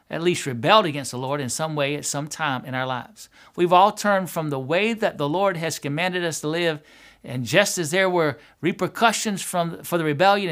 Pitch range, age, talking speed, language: 145-185 Hz, 60-79, 220 wpm, English